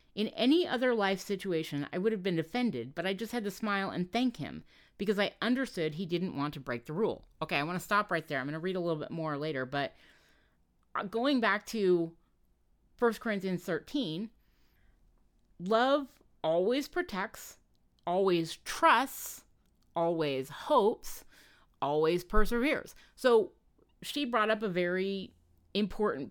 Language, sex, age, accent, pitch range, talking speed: English, female, 30-49, American, 170-240 Hz, 155 wpm